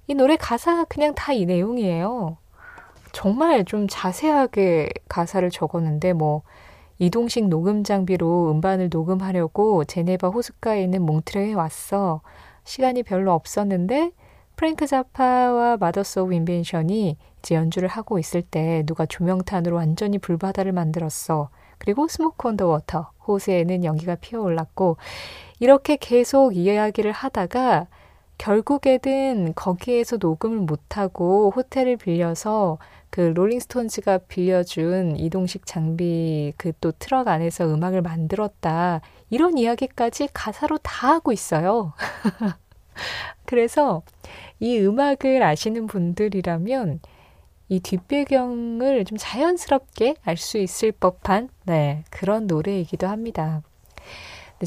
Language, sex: Korean, female